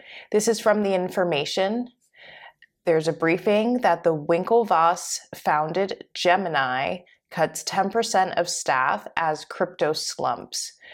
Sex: female